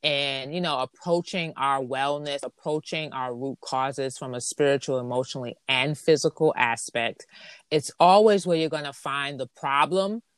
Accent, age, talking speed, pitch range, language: American, 30-49, 150 wpm, 140-175 Hz, English